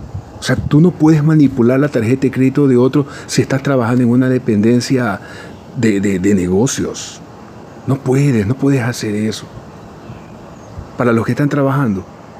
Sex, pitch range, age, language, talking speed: male, 105-130 Hz, 50-69, Spanish, 160 wpm